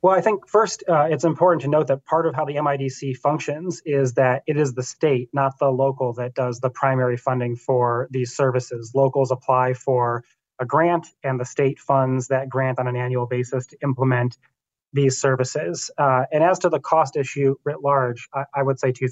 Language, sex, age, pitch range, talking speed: English, male, 30-49, 130-150 Hz, 205 wpm